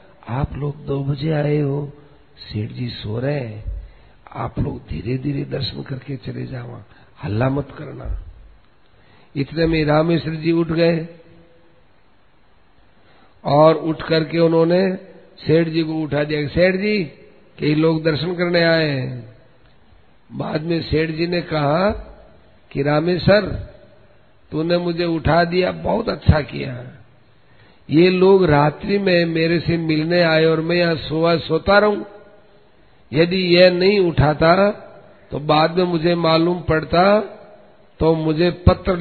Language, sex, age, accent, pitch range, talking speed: Hindi, male, 50-69, native, 145-175 Hz, 135 wpm